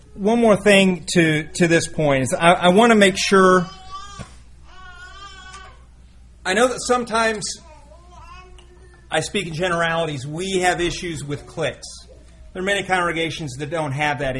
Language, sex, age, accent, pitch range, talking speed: English, male, 40-59, American, 120-175 Hz, 140 wpm